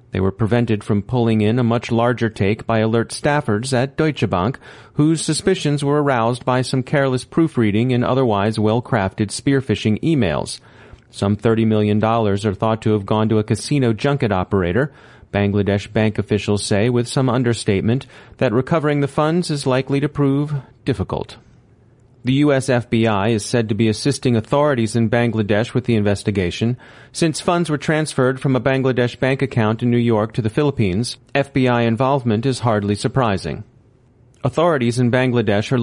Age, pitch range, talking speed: 40-59, 110-135 Hz, 160 wpm